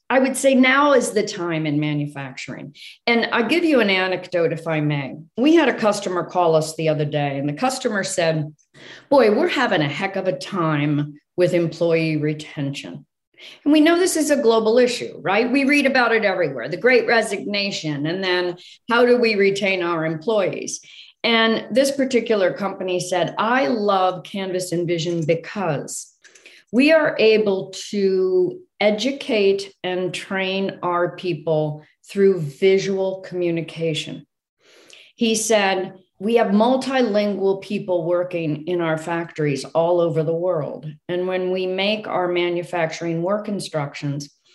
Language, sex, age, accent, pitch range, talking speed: English, female, 40-59, American, 165-230 Hz, 150 wpm